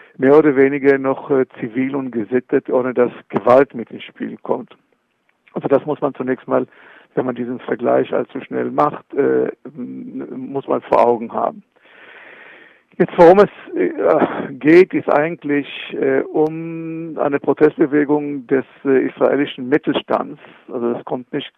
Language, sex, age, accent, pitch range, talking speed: German, male, 50-69, German, 125-150 Hz, 145 wpm